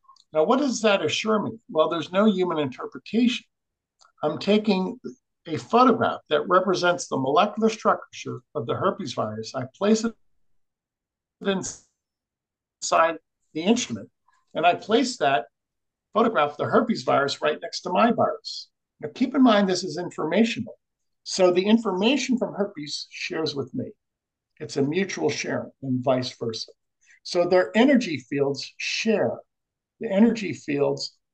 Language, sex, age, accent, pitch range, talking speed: English, male, 50-69, American, 150-225 Hz, 140 wpm